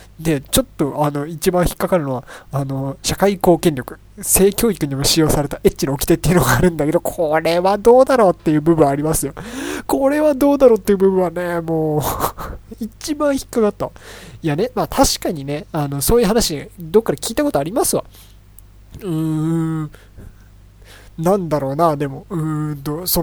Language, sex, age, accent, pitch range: Japanese, male, 20-39, native, 135-185 Hz